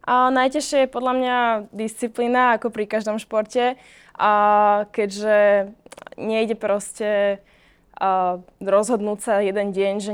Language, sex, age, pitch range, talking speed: Slovak, female, 20-39, 195-220 Hz, 110 wpm